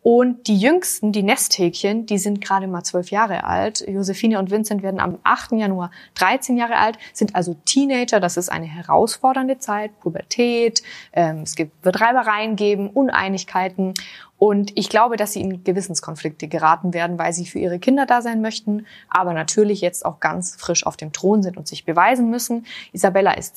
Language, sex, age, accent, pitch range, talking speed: German, female, 20-39, German, 180-225 Hz, 175 wpm